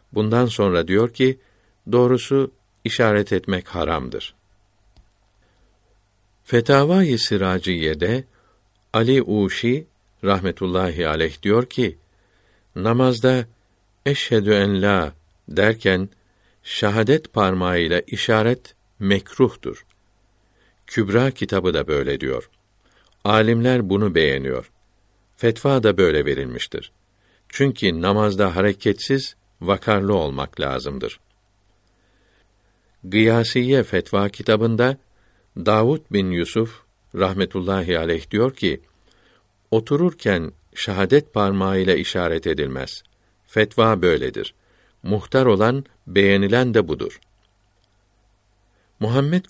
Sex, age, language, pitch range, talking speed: male, 50-69, Turkish, 95-115 Hz, 80 wpm